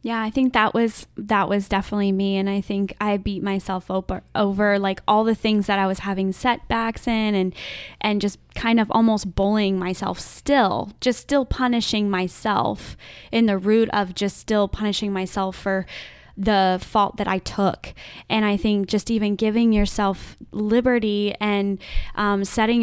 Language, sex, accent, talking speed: English, female, American, 170 wpm